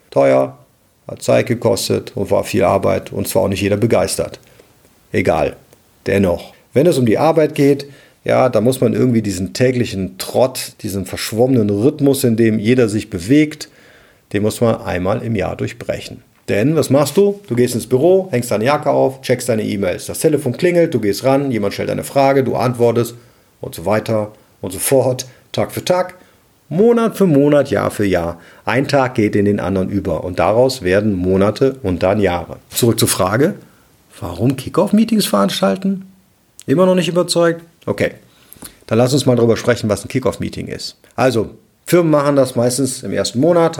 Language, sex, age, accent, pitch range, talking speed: German, male, 40-59, German, 105-140 Hz, 180 wpm